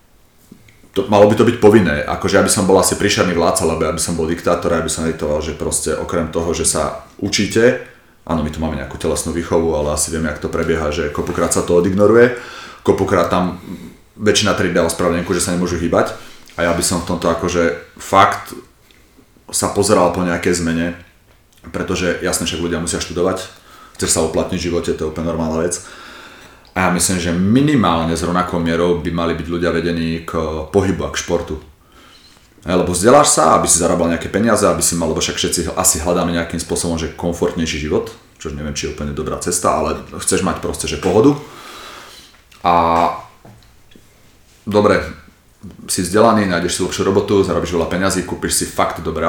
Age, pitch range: 30-49, 85-95 Hz